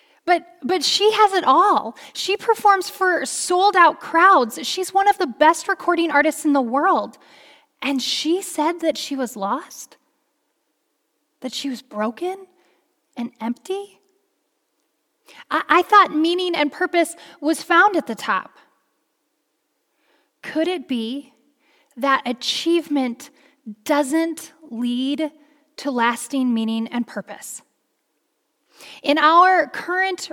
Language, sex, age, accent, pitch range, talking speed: English, female, 10-29, American, 245-315 Hz, 120 wpm